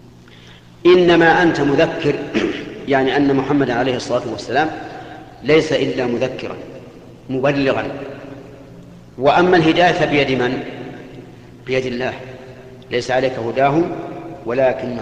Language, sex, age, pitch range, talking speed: Arabic, male, 50-69, 120-145 Hz, 90 wpm